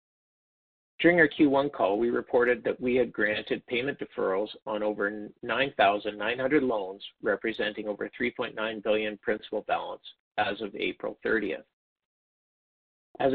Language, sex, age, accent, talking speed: English, male, 50-69, American, 120 wpm